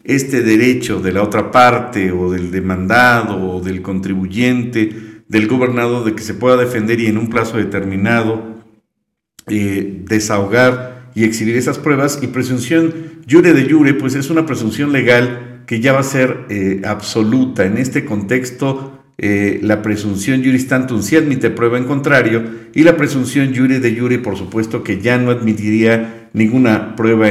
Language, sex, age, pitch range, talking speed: Spanish, male, 50-69, 105-125 Hz, 165 wpm